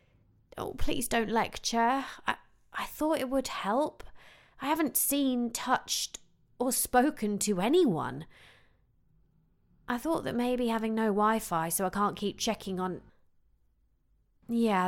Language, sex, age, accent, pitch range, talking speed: English, female, 30-49, British, 195-280 Hz, 130 wpm